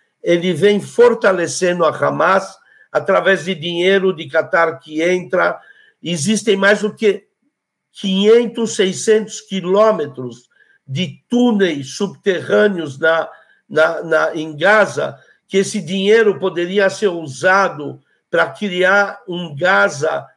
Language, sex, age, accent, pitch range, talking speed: Portuguese, male, 60-79, Brazilian, 165-210 Hz, 100 wpm